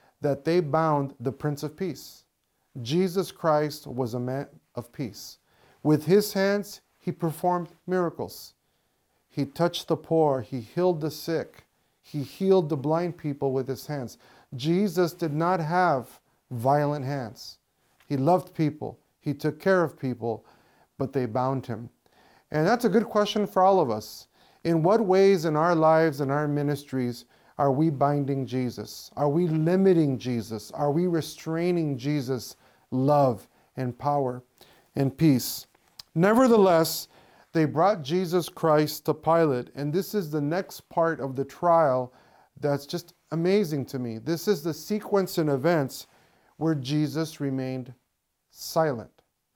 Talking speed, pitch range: 145 wpm, 135-175 Hz